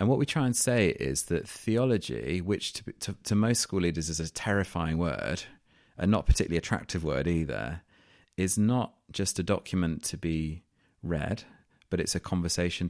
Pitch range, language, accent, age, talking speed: 85-110 Hz, English, British, 30-49, 175 wpm